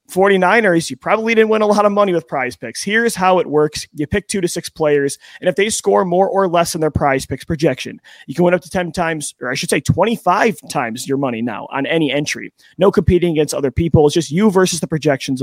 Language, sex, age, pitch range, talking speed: English, male, 30-49, 145-190 Hz, 250 wpm